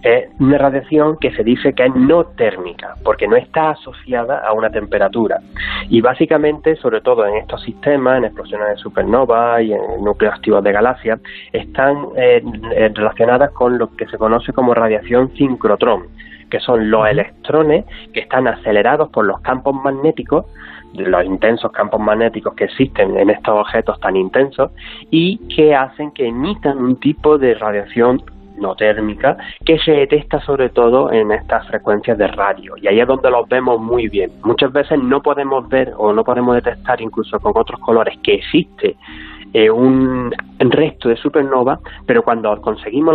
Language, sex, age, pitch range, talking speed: Spanish, male, 20-39, 110-140 Hz, 165 wpm